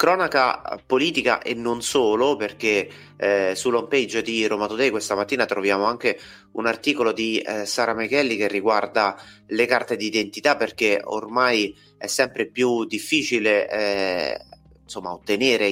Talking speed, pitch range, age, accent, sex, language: 135 wpm, 105-125 Hz, 30-49, native, male, Italian